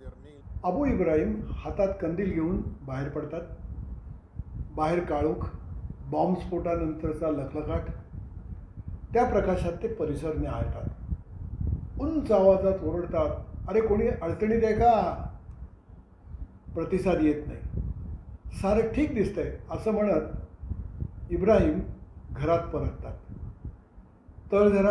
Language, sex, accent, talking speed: Marathi, male, native, 80 wpm